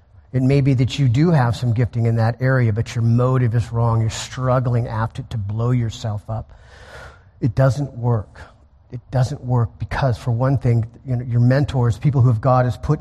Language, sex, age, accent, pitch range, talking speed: English, male, 40-59, American, 110-135 Hz, 210 wpm